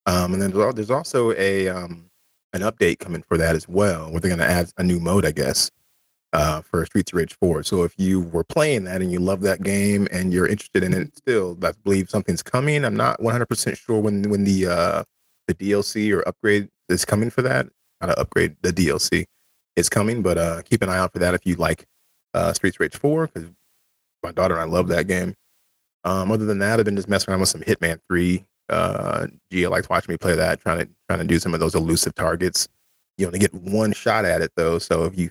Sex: male